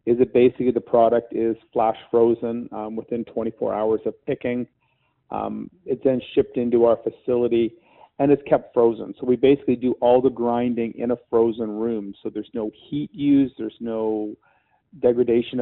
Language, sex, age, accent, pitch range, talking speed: English, male, 40-59, American, 115-130 Hz, 170 wpm